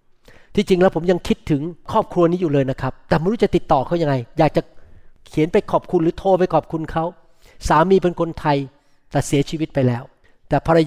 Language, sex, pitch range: Thai, male, 160-220 Hz